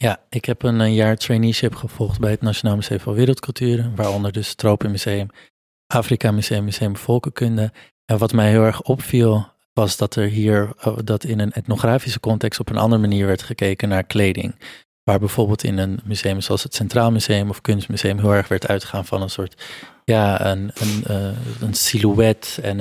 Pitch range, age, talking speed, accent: 100-115 Hz, 20-39, 175 wpm, Dutch